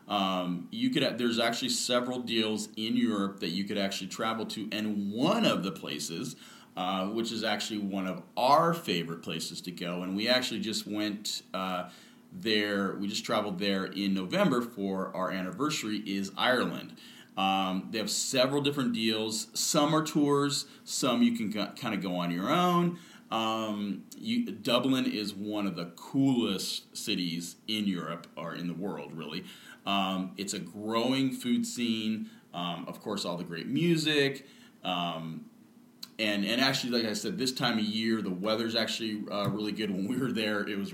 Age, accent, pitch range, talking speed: 40-59, American, 95-125 Hz, 175 wpm